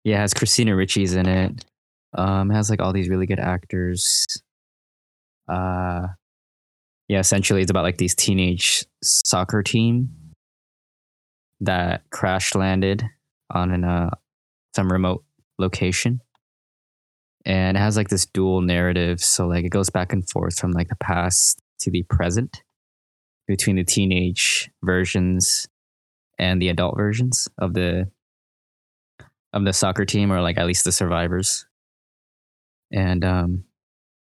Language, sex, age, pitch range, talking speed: English, male, 20-39, 90-100 Hz, 135 wpm